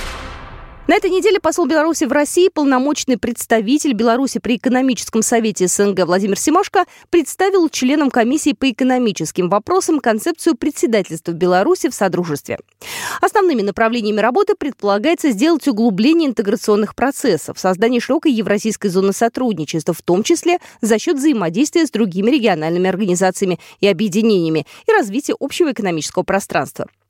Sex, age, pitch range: female, 20-39, 205-325 Hz